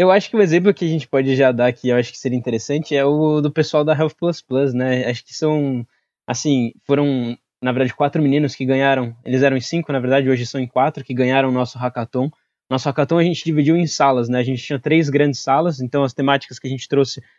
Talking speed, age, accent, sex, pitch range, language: 250 wpm, 20-39, Brazilian, male, 130-150 Hz, Portuguese